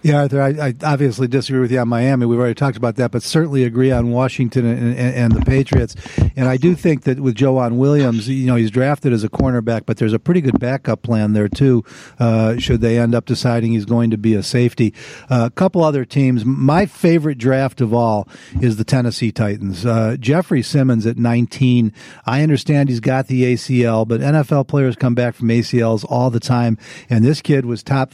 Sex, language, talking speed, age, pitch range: male, English, 215 wpm, 50-69, 120-140 Hz